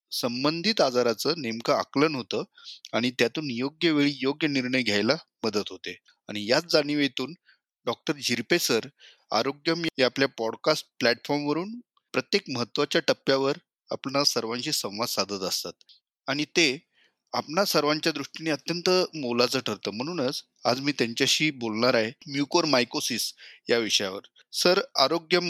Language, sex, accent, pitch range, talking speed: Marathi, male, native, 120-155 Hz, 40 wpm